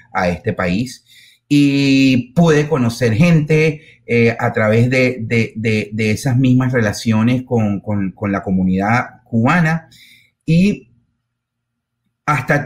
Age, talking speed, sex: 30-49, 120 wpm, male